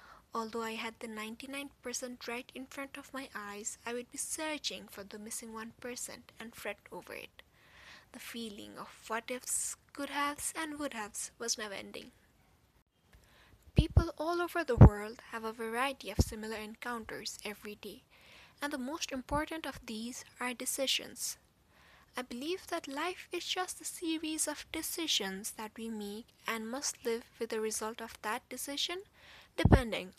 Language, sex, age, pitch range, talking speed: English, female, 10-29, 225-285 Hz, 155 wpm